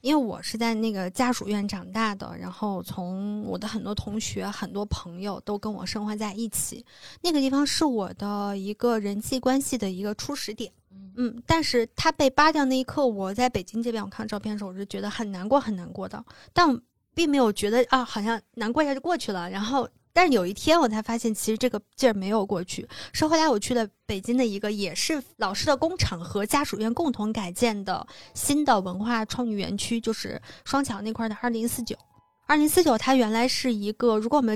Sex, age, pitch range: female, 20-39, 205-260 Hz